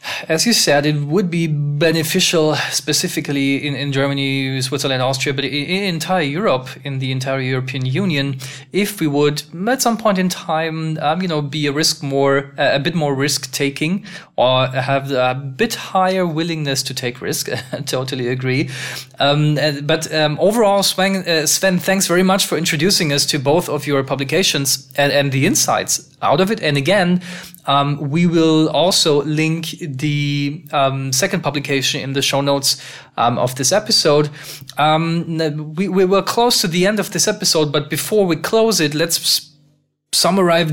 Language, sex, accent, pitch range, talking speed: English, male, German, 140-175 Hz, 175 wpm